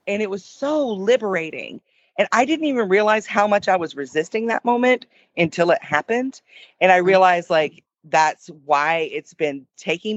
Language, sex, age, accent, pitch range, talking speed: English, female, 40-59, American, 155-210 Hz, 170 wpm